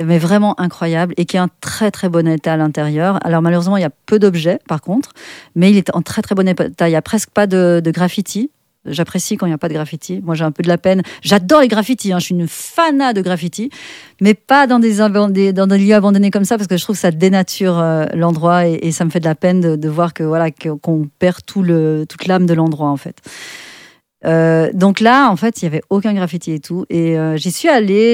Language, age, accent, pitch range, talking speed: French, 40-59, French, 160-200 Hz, 260 wpm